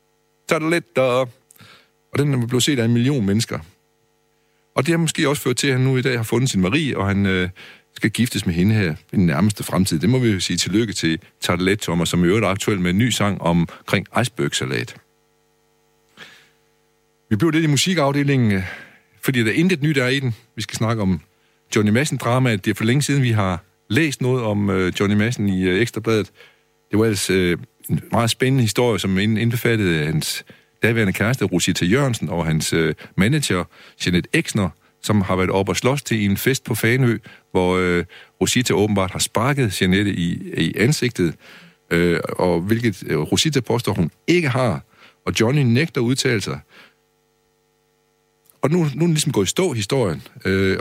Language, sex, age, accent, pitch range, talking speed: Danish, male, 60-79, native, 95-130 Hz, 185 wpm